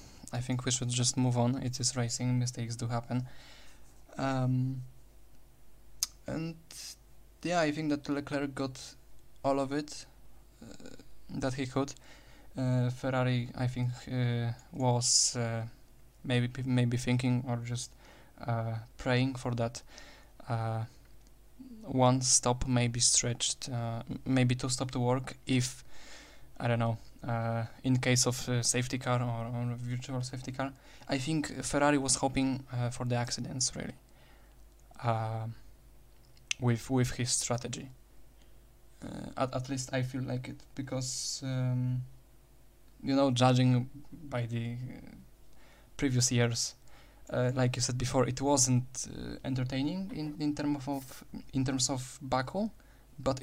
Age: 20-39